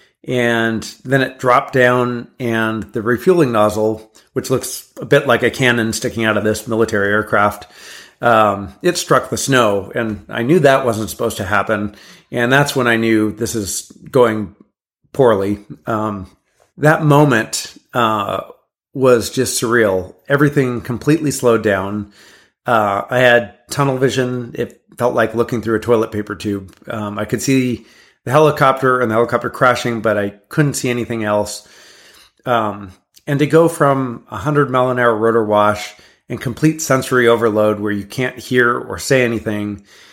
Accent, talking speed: American, 160 wpm